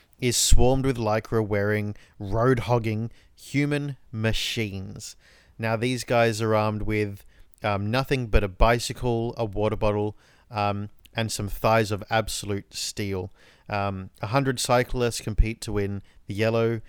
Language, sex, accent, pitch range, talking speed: English, male, Australian, 105-120 Hz, 130 wpm